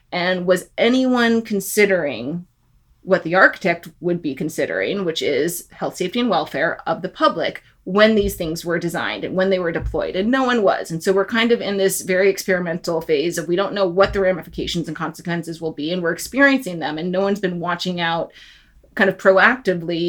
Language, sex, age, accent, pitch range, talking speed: English, female, 30-49, American, 170-200 Hz, 200 wpm